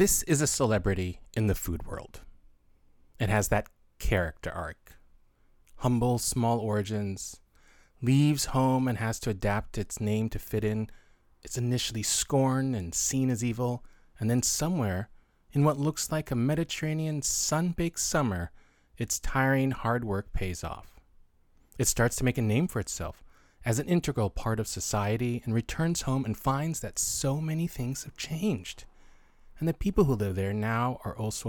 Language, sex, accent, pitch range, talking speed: English, male, American, 95-135 Hz, 160 wpm